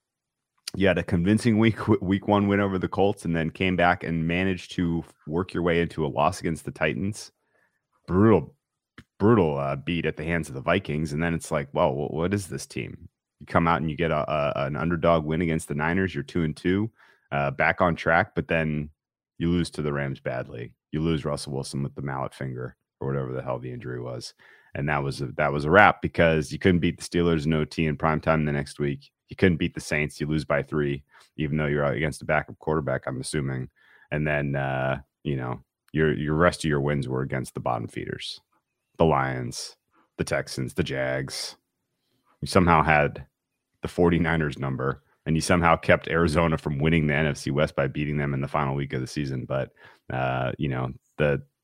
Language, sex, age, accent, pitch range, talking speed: English, male, 30-49, American, 70-85 Hz, 215 wpm